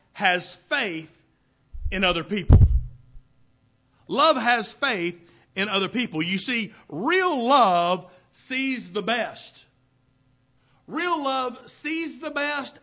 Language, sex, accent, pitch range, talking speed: English, male, American, 170-250 Hz, 110 wpm